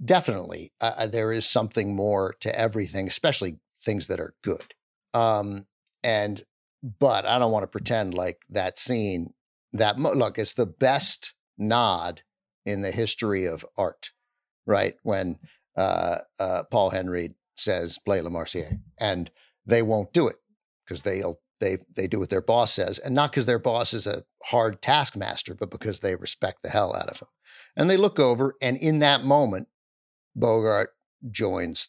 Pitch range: 95-130 Hz